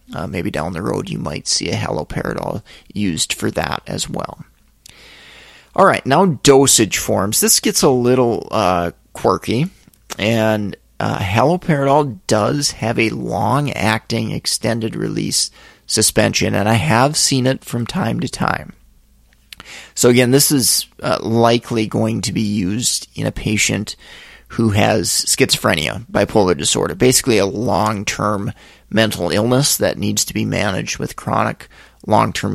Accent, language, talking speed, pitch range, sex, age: American, English, 140 wpm, 105-125 Hz, male, 30-49